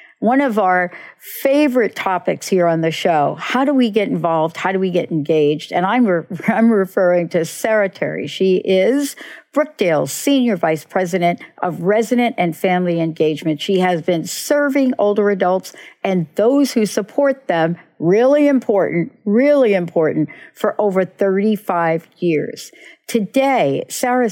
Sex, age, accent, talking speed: female, 60-79, American, 145 wpm